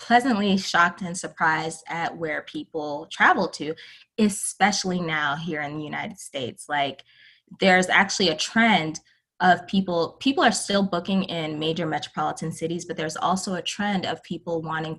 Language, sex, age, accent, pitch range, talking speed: English, female, 20-39, American, 155-185 Hz, 155 wpm